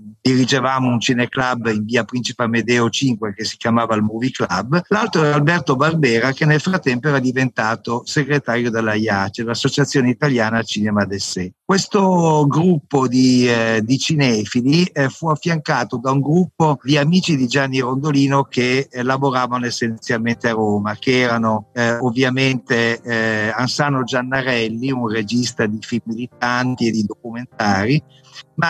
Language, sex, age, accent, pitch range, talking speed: Italian, male, 50-69, native, 115-145 Hz, 145 wpm